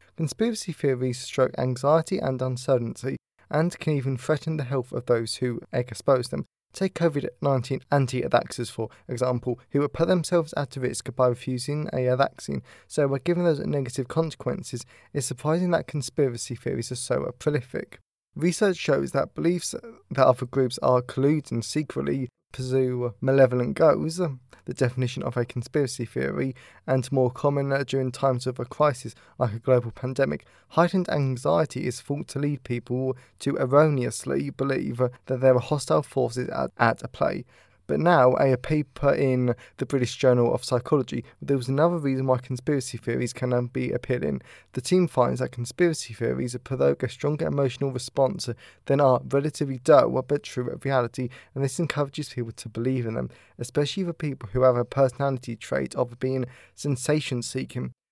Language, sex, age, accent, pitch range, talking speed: English, male, 20-39, British, 125-145 Hz, 160 wpm